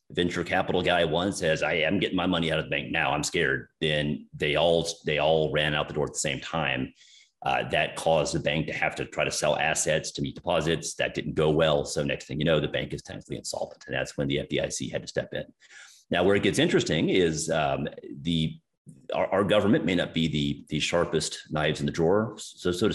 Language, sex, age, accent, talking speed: English, male, 40-59, American, 240 wpm